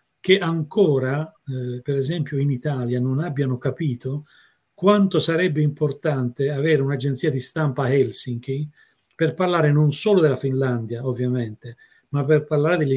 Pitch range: 130-160 Hz